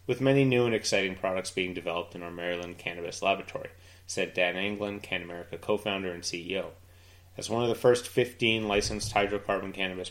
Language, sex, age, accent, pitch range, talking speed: English, male, 30-49, American, 90-105 Hz, 180 wpm